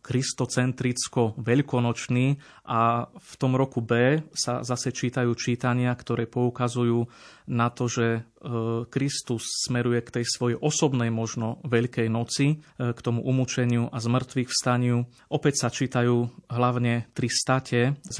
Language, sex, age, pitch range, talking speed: Slovak, male, 30-49, 120-130 Hz, 120 wpm